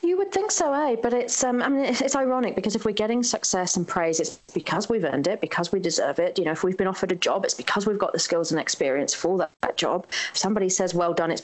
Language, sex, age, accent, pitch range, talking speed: English, female, 30-49, British, 165-215 Hz, 280 wpm